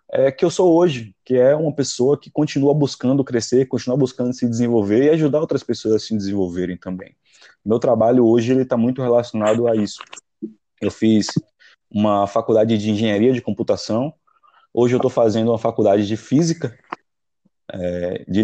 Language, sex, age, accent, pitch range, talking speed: Portuguese, male, 20-39, Brazilian, 110-135 Hz, 170 wpm